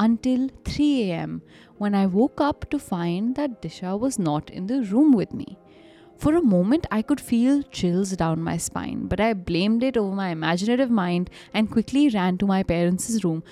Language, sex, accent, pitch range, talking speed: English, female, Indian, 180-260 Hz, 190 wpm